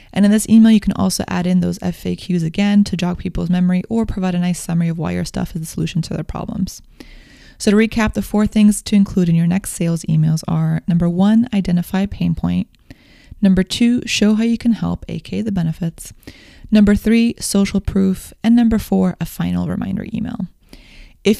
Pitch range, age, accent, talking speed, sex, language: 175-205 Hz, 20-39, American, 200 wpm, female, English